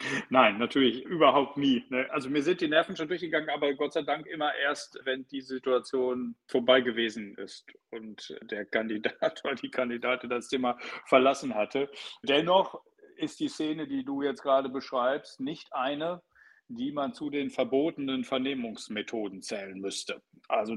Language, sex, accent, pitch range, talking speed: German, male, German, 125-160 Hz, 155 wpm